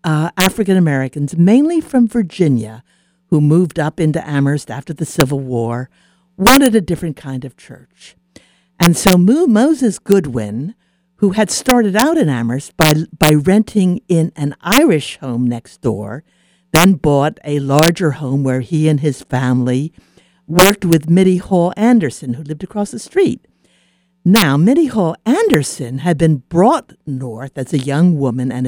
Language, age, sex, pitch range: English, 60-79, female, 135-190 Hz